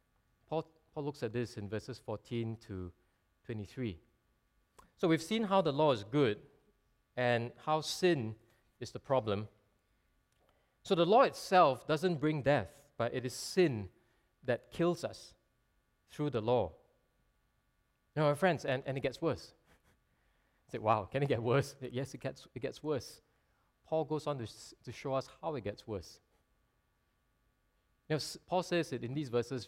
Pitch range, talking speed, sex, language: 110-150 Hz, 160 wpm, male, English